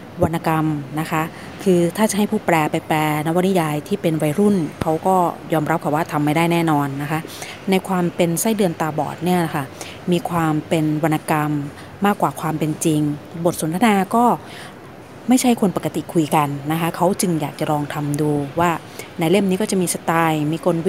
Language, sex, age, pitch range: Thai, female, 20-39, 150-180 Hz